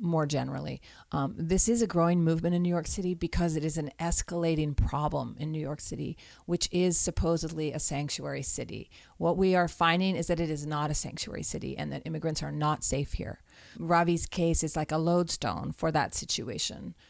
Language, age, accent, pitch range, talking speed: English, 40-59, American, 150-175 Hz, 195 wpm